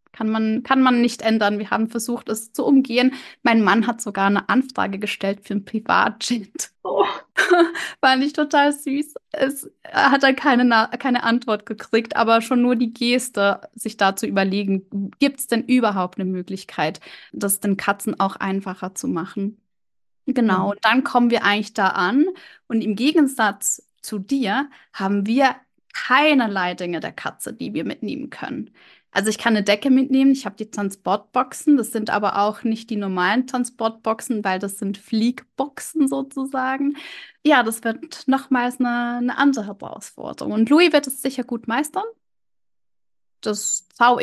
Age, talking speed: 20-39, 160 wpm